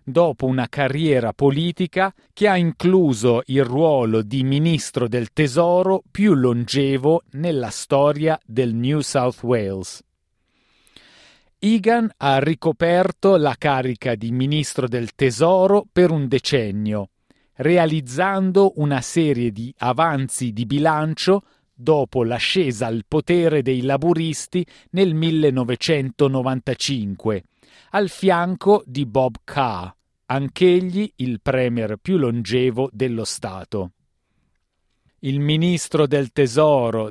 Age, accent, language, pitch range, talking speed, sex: 40-59, native, Italian, 125-165 Hz, 105 wpm, male